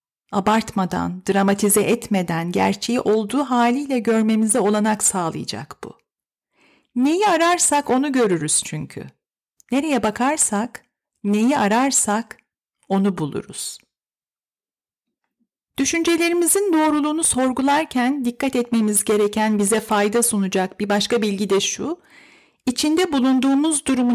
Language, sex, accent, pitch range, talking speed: Turkish, female, native, 195-260 Hz, 95 wpm